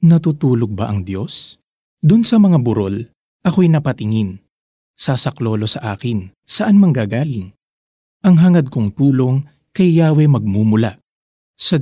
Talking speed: 115 wpm